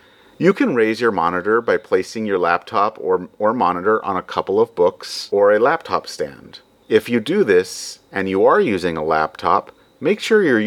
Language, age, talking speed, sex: English, 40-59, 190 wpm, male